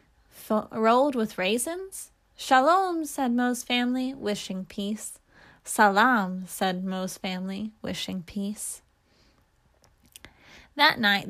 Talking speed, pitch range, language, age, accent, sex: 95 wpm, 200-255 Hz, English, 10-29, American, female